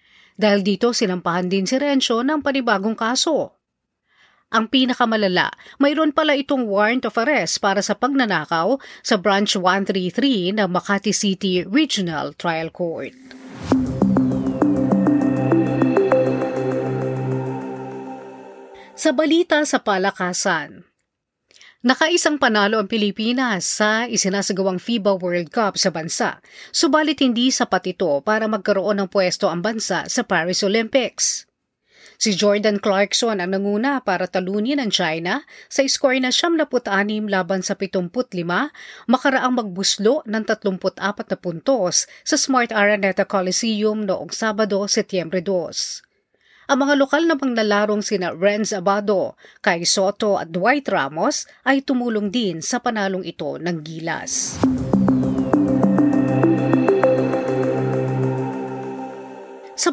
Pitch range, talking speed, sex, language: 180-240 Hz, 110 wpm, female, Filipino